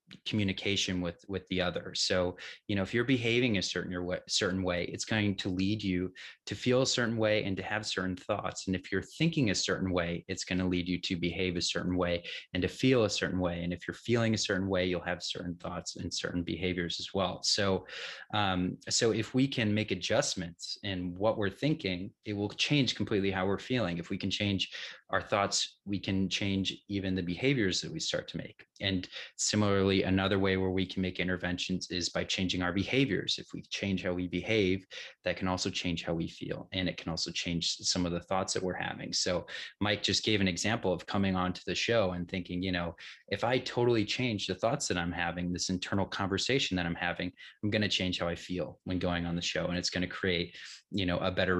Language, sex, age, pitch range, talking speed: English, male, 30-49, 90-105 Hz, 225 wpm